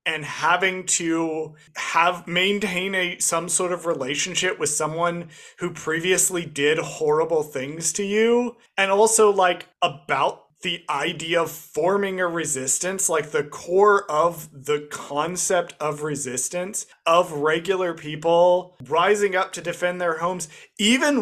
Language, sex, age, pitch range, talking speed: English, male, 30-49, 160-205 Hz, 135 wpm